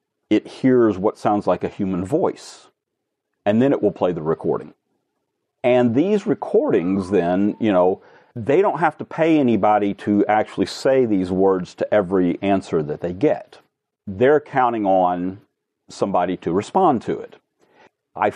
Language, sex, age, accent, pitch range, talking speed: English, male, 40-59, American, 95-120 Hz, 155 wpm